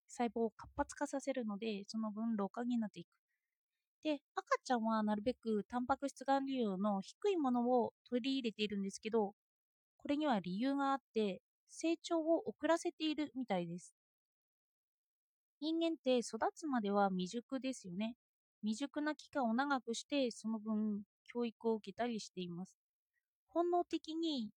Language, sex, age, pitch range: Japanese, female, 20-39, 215-290 Hz